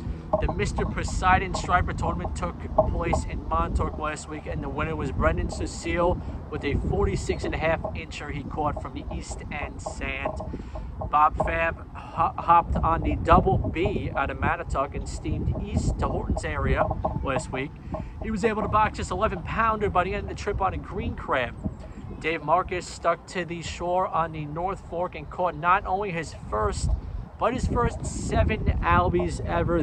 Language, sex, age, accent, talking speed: English, male, 40-59, American, 170 wpm